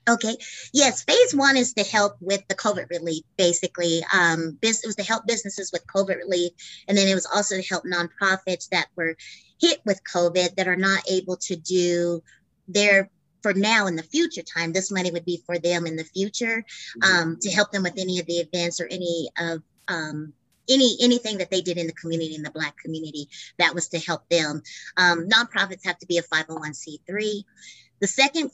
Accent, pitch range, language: American, 170-200 Hz, English